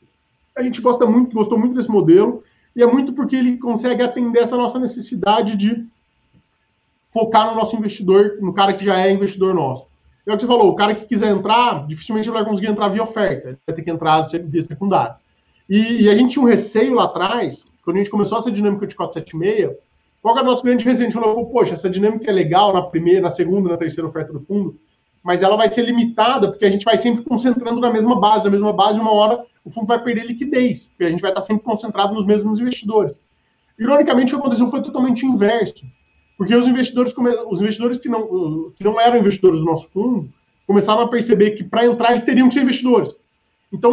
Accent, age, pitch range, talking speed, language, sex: Brazilian, 20-39, 190-240 Hz, 215 wpm, Portuguese, male